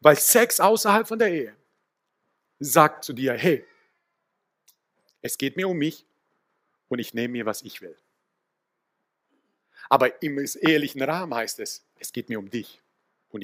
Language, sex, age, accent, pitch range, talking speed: German, male, 50-69, German, 140-190 Hz, 150 wpm